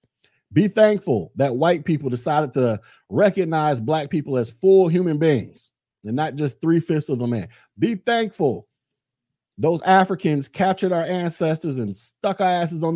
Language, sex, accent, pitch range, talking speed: English, male, American, 135-200 Hz, 155 wpm